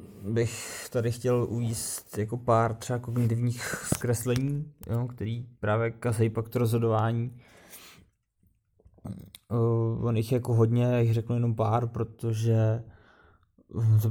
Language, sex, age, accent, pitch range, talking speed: Czech, male, 20-39, native, 115-125 Hz, 120 wpm